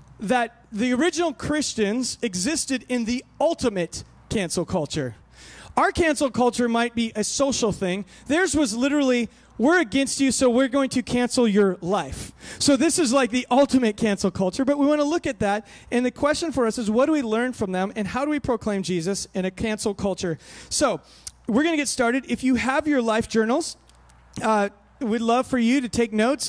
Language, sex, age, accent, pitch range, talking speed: English, male, 30-49, American, 195-255 Hz, 195 wpm